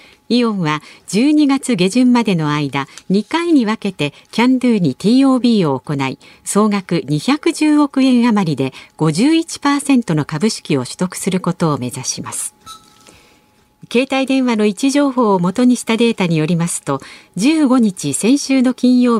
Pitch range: 160-255 Hz